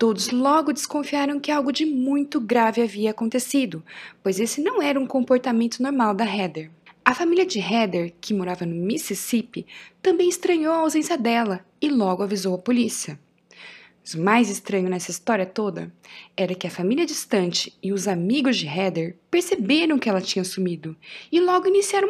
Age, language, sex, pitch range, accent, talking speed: 20-39, Portuguese, female, 200-290 Hz, Brazilian, 165 wpm